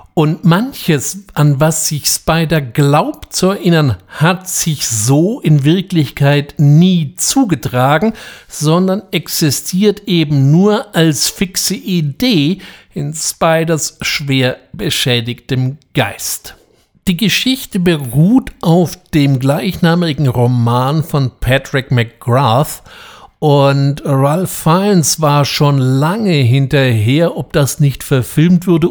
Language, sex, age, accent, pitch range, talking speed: German, male, 60-79, German, 130-170 Hz, 105 wpm